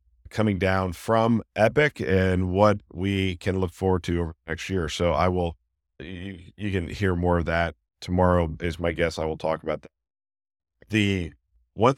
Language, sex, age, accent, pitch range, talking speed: English, male, 50-69, American, 85-100 Hz, 170 wpm